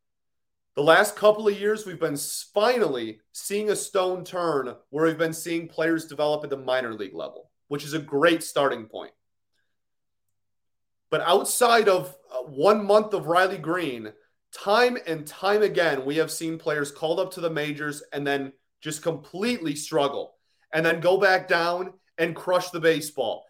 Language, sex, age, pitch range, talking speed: English, male, 30-49, 140-185 Hz, 165 wpm